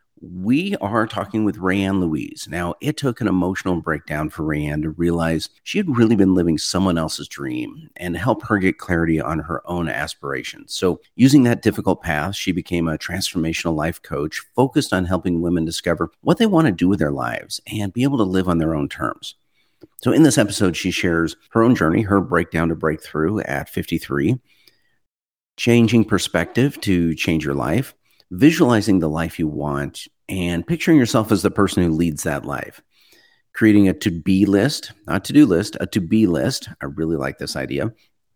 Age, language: 50-69, English